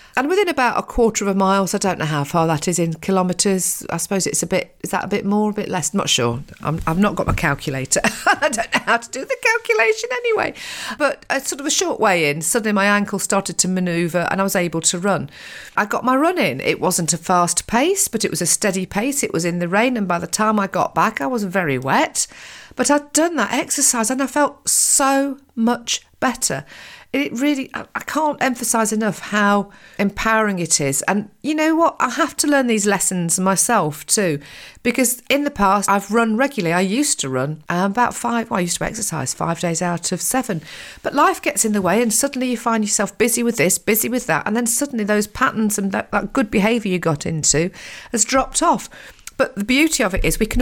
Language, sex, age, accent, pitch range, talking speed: English, female, 40-59, British, 180-250 Hz, 235 wpm